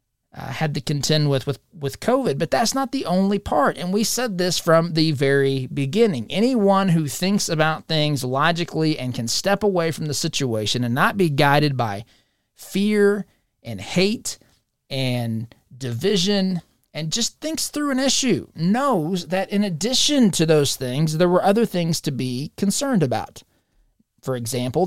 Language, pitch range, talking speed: English, 140-200 Hz, 165 wpm